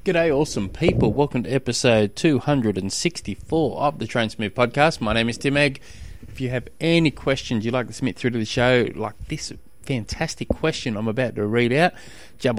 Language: English